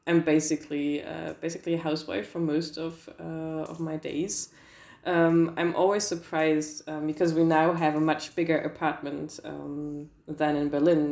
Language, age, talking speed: Russian, 20-39, 160 wpm